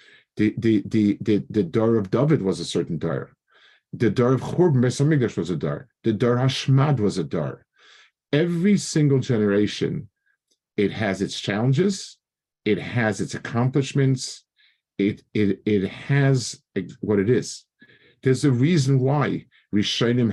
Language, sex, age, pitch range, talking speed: English, male, 50-69, 100-130 Hz, 145 wpm